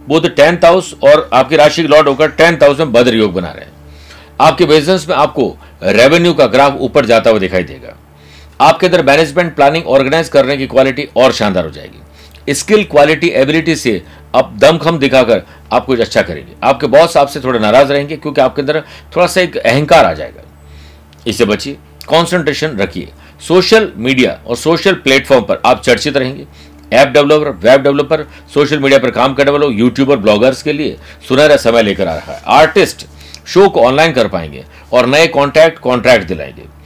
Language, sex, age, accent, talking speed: Hindi, male, 60-79, native, 140 wpm